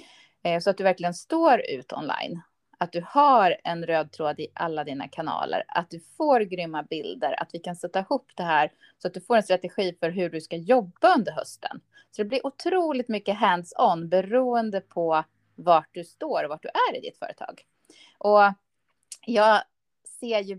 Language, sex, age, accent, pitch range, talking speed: Swedish, female, 30-49, native, 175-235 Hz, 185 wpm